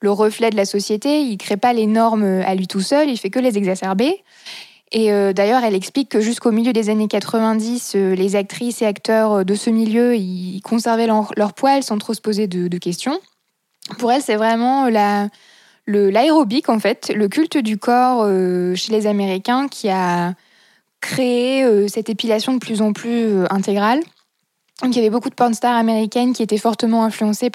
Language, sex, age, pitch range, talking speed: French, female, 20-39, 200-240 Hz, 205 wpm